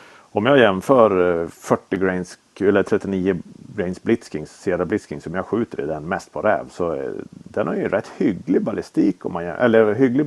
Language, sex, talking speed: Swedish, male, 165 wpm